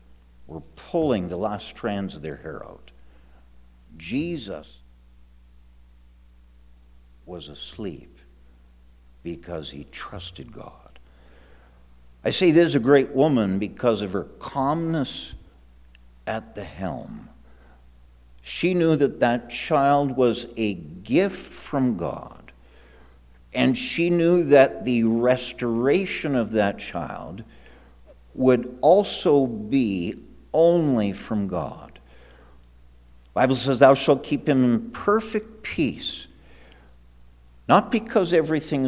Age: 60-79